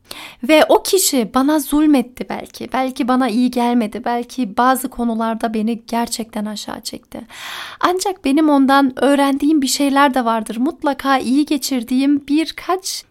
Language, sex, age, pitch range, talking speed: Turkish, female, 30-49, 240-295 Hz, 135 wpm